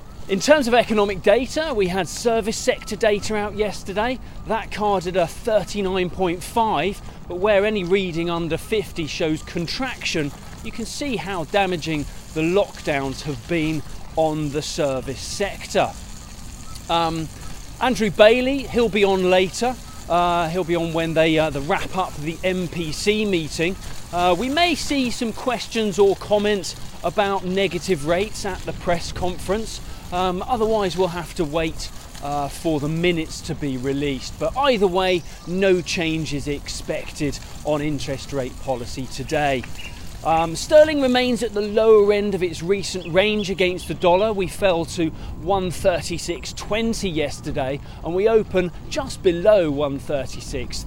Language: English